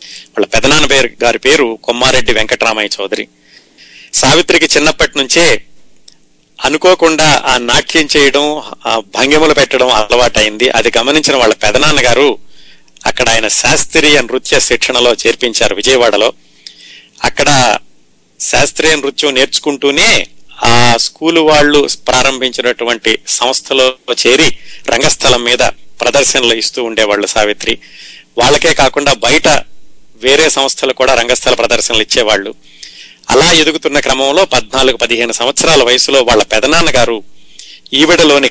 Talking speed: 105 wpm